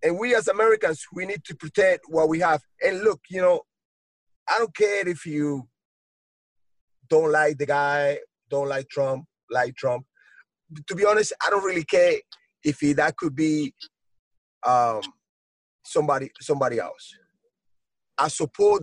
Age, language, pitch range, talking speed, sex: 30-49, English, 145-225 Hz, 155 wpm, male